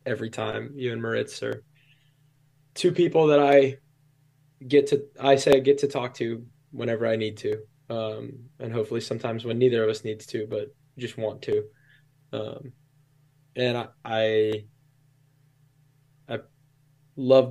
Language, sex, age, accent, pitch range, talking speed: English, male, 10-29, American, 115-145 Hz, 145 wpm